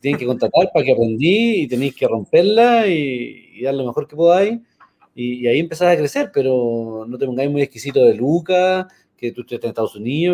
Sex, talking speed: male, 215 wpm